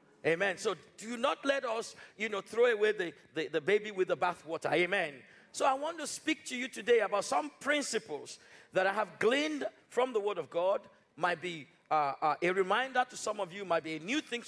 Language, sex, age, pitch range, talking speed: English, male, 50-69, 180-250 Hz, 225 wpm